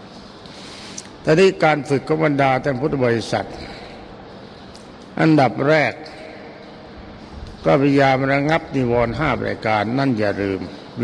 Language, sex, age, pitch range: Thai, male, 60-79, 115-140 Hz